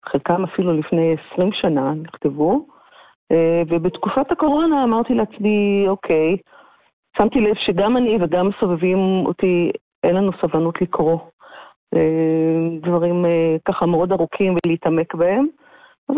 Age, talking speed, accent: 40-59, 110 wpm, native